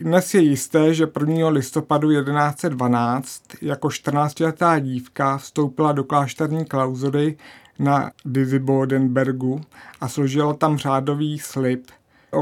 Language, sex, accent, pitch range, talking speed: Czech, male, native, 135-155 Hz, 105 wpm